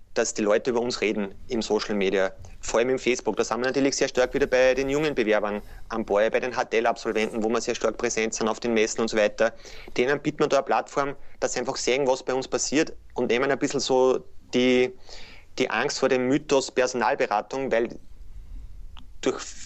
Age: 30-49